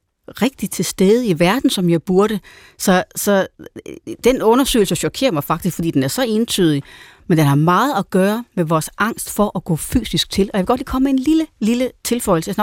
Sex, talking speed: female, 225 wpm